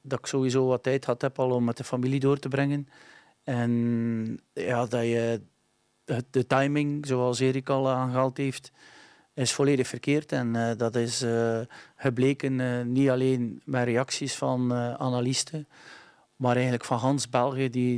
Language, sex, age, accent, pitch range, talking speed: English, male, 40-59, Dutch, 120-135 Hz, 160 wpm